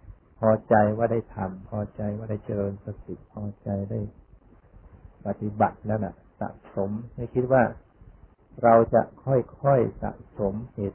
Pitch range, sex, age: 100-115 Hz, male, 60-79